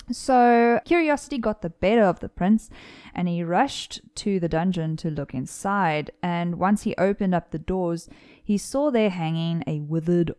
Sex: female